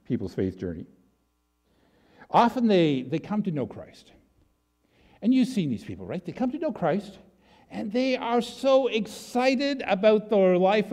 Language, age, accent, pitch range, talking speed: English, 50-69, American, 170-225 Hz, 160 wpm